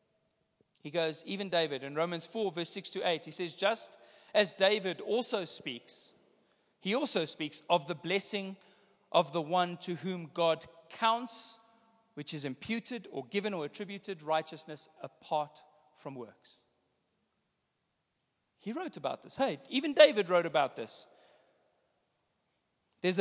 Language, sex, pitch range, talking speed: English, male, 160-205 Hz, 135 wpm